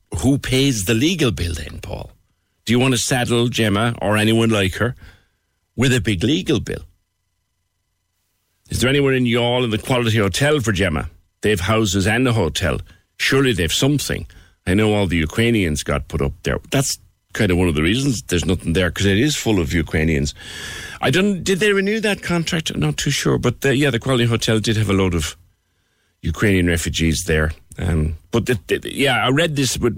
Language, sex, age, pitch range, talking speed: English, male, 60-79, 85-120 Hz, 200 wpm